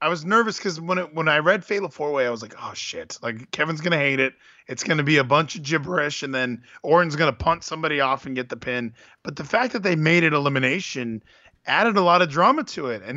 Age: 20-39